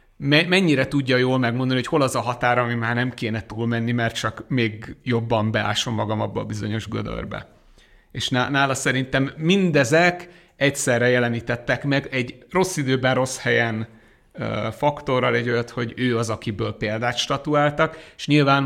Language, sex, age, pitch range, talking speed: Hungarian, male, 30-49, 115-135 Hz, 150 wpm